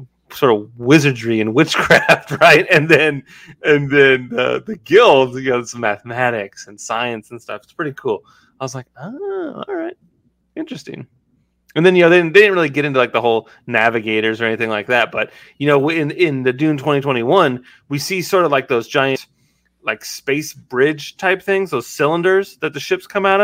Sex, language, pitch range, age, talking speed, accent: male, English, 115-150 Hz, 30-49, 195 wpm, American